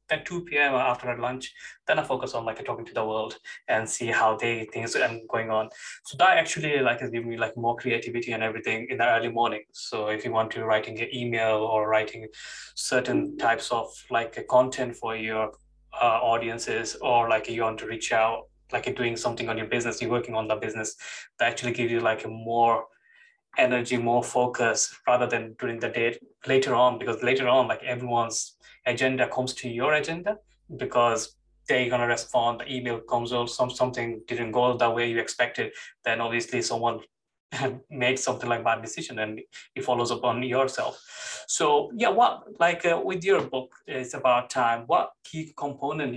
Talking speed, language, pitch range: 190 wpm, English, 115-130 Hz